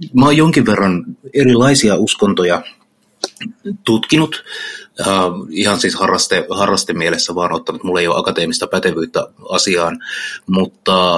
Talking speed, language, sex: 105 wpm, Finnish, male